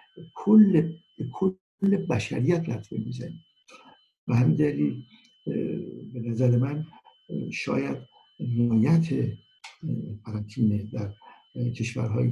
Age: 60-79